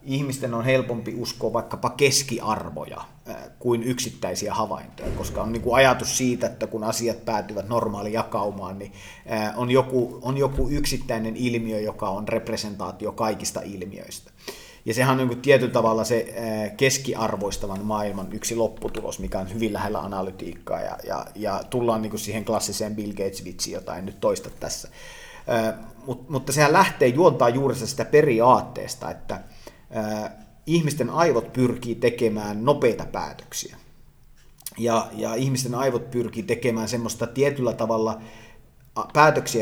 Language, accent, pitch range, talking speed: Finnish, native, 110-125 Hz, 120 wpm